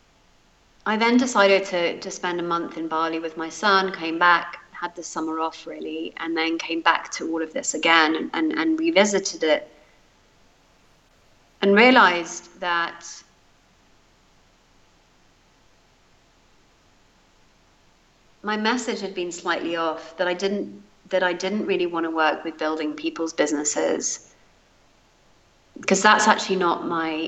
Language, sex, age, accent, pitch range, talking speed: English, female, 40-59, British, 160-195 Hz, 135 wpm